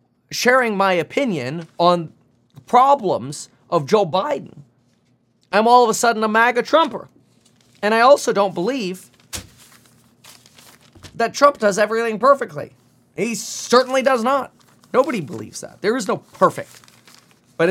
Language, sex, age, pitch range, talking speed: English, male, 20-39, 165-265 Hz, 130 wpm